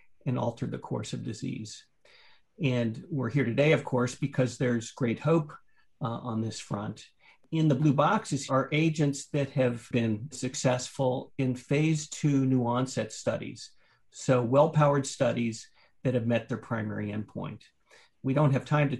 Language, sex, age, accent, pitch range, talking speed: English, male, 50-69, American, 115-140 Hz, 160 wpm